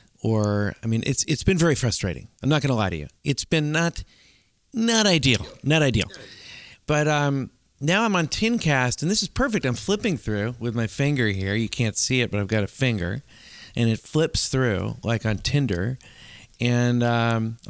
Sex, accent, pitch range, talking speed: male, American, 105-135 Hz, 195 wpm